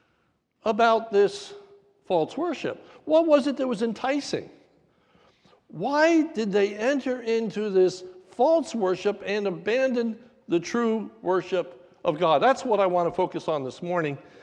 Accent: American